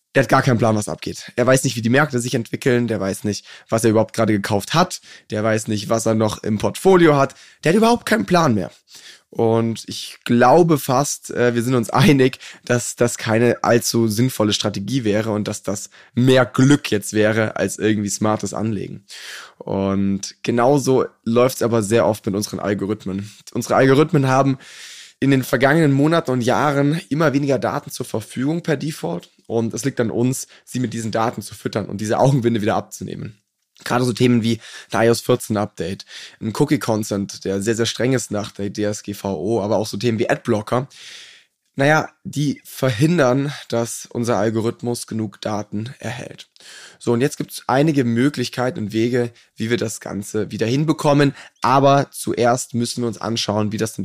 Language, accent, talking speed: German, German, 185 wpm